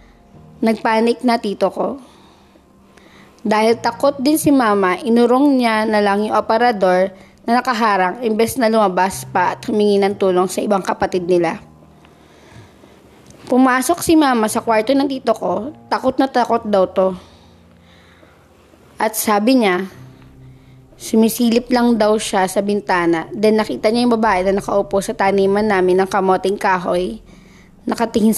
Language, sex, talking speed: Filipino, female, 135 wpm